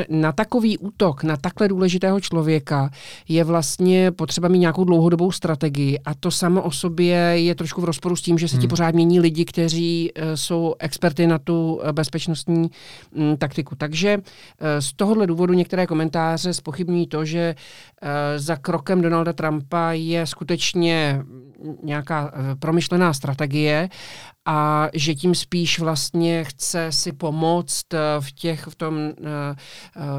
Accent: native